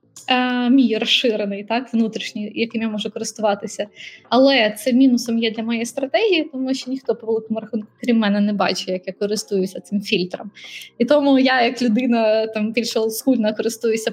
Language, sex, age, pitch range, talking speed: Ukrainian, female, 20-39, 210-245 Hz, 155 wpm